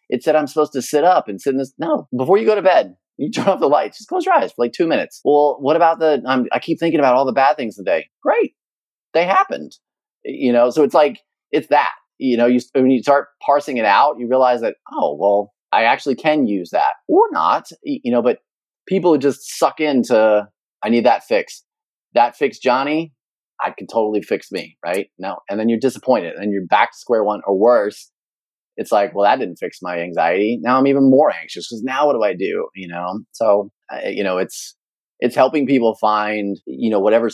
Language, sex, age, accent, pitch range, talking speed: English, male, 30-49, American, 100-150 Hz, 230 wpm